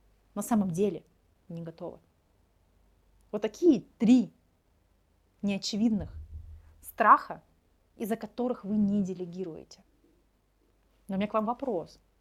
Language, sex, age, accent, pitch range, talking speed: Russian, female, 30-49, native, 185-240 Hz, 105 wpm